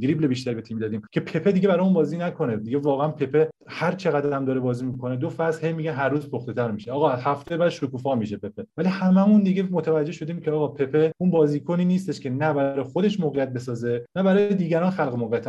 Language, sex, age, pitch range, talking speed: Persian, male, 30-49, 125-160 Hz, 220 wpm